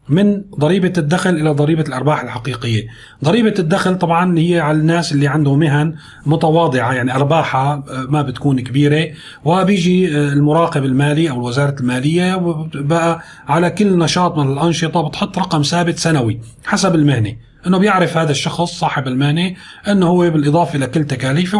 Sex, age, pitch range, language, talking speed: male, 40-59, 145-180 Hz, Arabic, 140 wpm